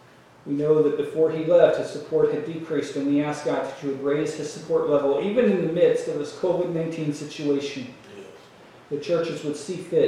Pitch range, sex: 145-175 Hz, male